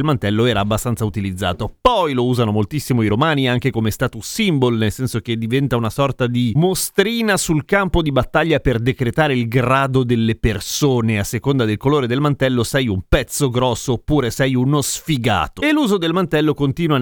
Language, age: Italian, 30-49